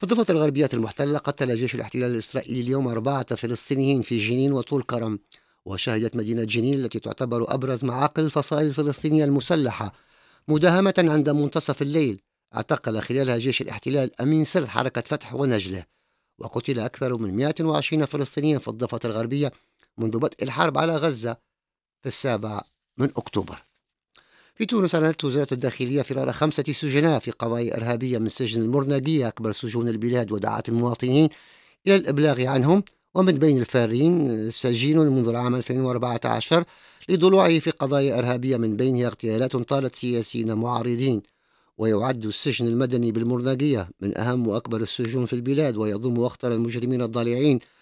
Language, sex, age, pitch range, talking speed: English, male, 50-69, 115-145 Hz, 135 wpm